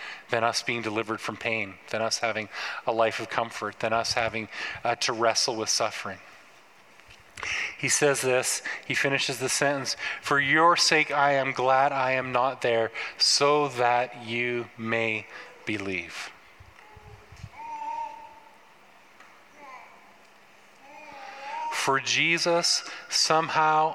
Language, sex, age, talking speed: English, male, 30-49, 115 wpm